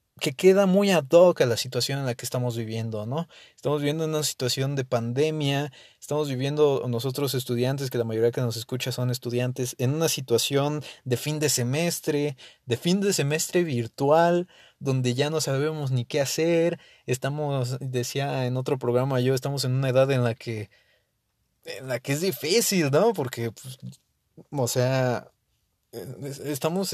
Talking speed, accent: 165 wpm, Mexican